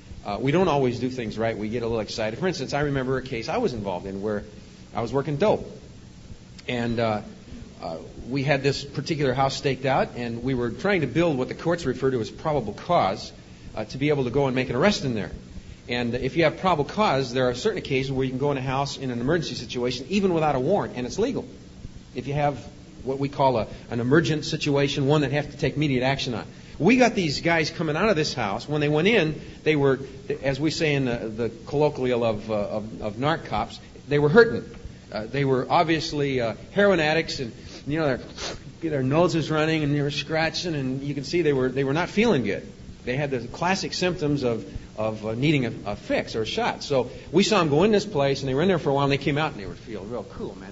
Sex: male